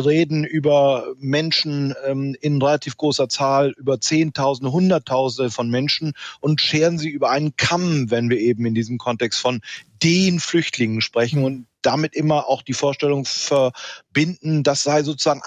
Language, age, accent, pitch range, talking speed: German, 40-59, German, 135-160 Hz, 155 wpm